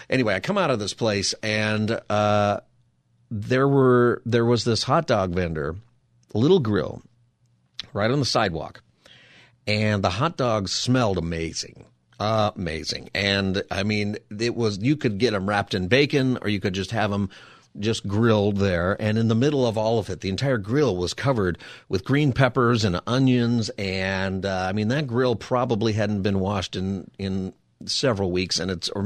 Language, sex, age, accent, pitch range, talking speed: English, male, 40-59, American, 100-125 Hz, 180 wpm